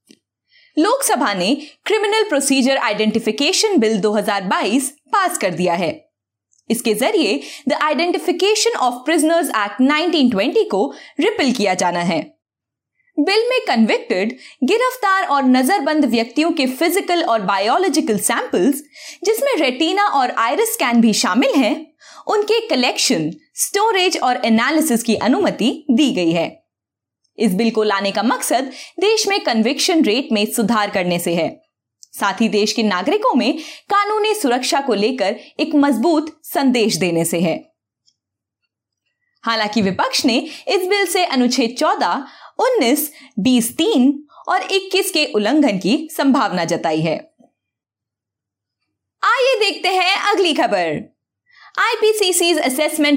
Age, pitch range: 20-39, 220-360 Hz